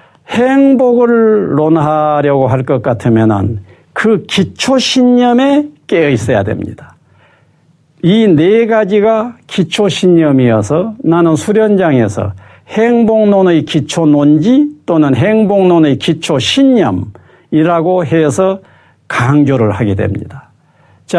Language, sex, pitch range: Korean, male, 150-225 Hz